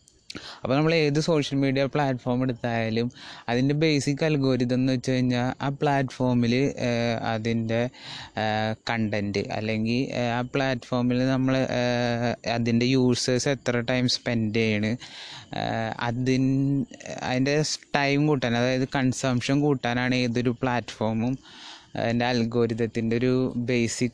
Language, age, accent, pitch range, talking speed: Malayalam, 20-39, native, 120-135 Hz, 95 wpm